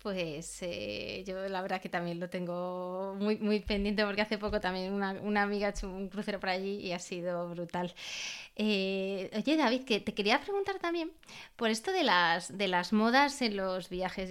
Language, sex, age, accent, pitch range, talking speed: Spanish, female, 20-39, Spanish, 205-250 Hz, 195 wpm